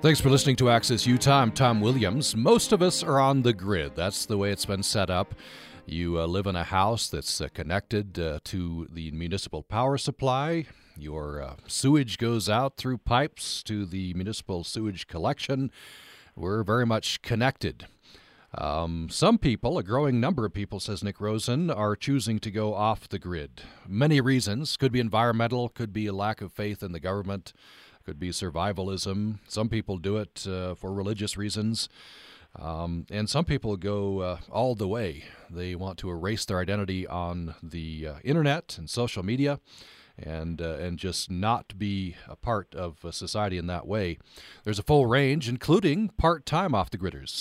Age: 40-59